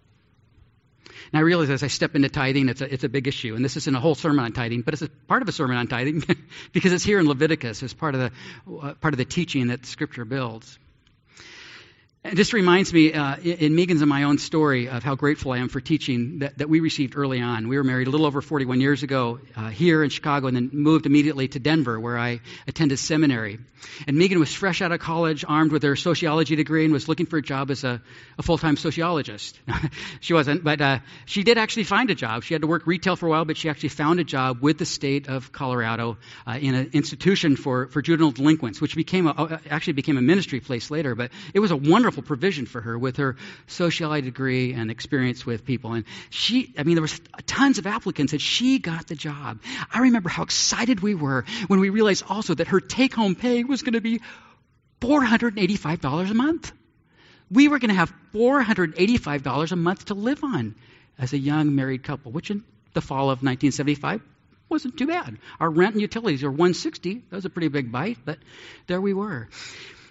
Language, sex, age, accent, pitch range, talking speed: English, male, 50-69, American, 130-175 Hz, 225 wpm